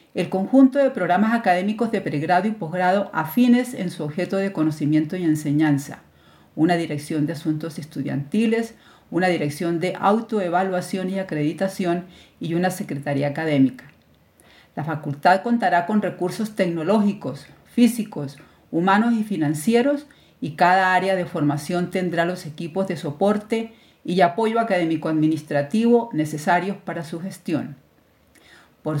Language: Spanish